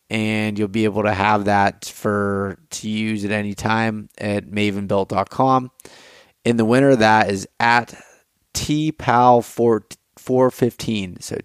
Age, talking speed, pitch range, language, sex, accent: 30-49, 120 wpm, 105-120 Hz, English, male, American